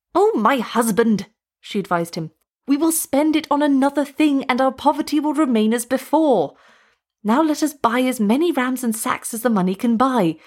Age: 30-49